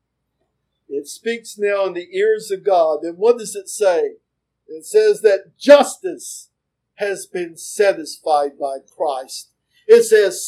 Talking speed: 135 wpm